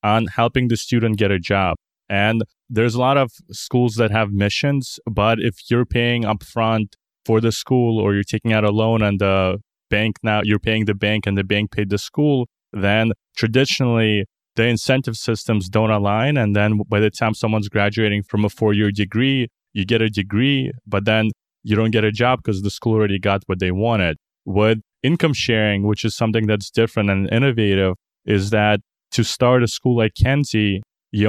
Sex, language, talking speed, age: male, English, 195 wpm, 20-39